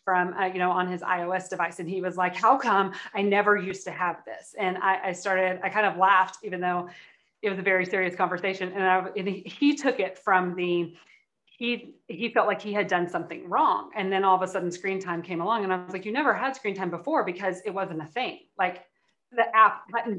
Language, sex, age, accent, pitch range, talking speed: English, female, 30-49, American, 180-205 Hz, 245 wpm